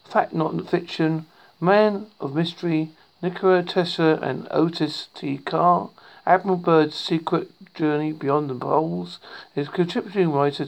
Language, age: English, 50-69